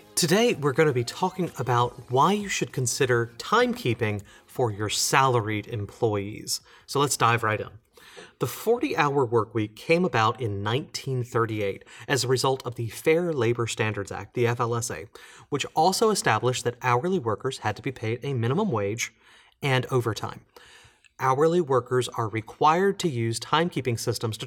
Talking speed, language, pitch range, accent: 155 wpm, English, 115-150 Hz, American